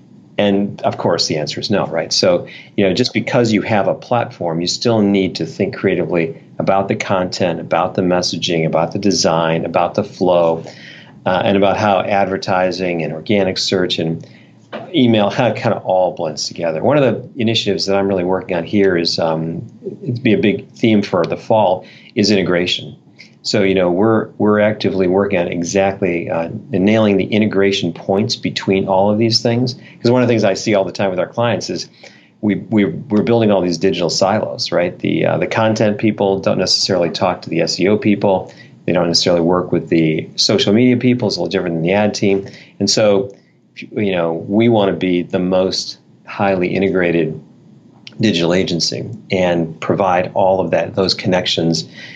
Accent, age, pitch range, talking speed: American, 50-69, 90-105 Hz, 190 wpm